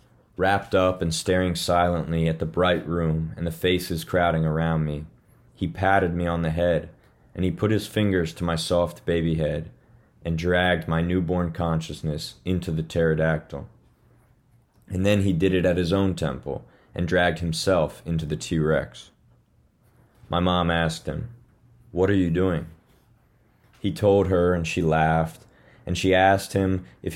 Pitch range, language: 80-95 Hz, English